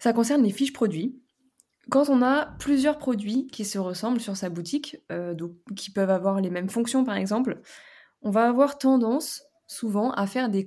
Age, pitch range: 20-39, 195-245 Hz